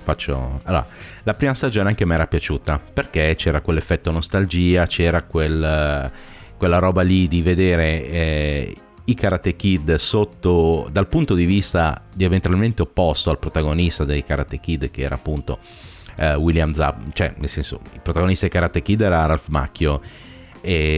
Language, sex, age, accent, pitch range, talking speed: Italian, male, 30-49, native, 75-95 Hz, 160 wpm